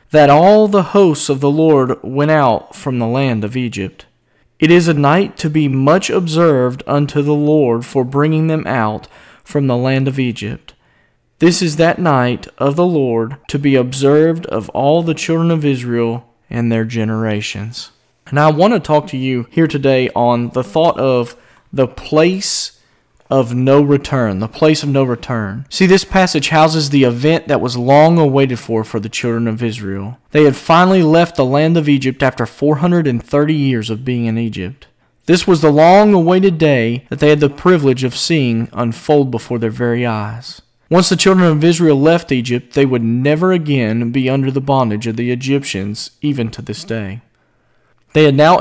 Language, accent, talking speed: English, American, 190 wpm